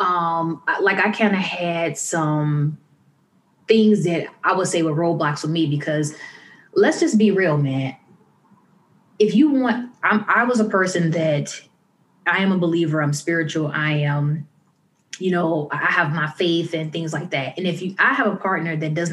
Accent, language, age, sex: American, English, 20-39, female